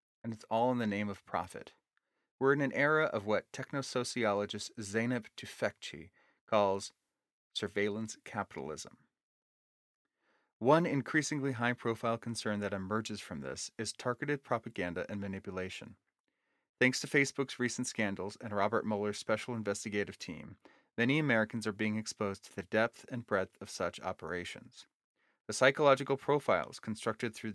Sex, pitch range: male, 105-125 Hz